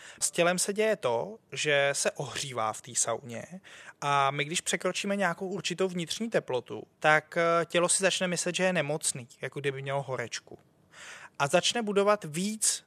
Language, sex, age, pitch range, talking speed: Czech, male, 20-39, 135-165 Hz, 165 wpm